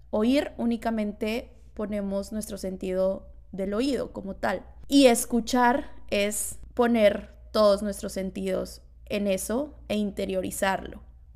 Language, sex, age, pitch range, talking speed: Spanish, female, 20-39, 200-235 Hz, 105 wpm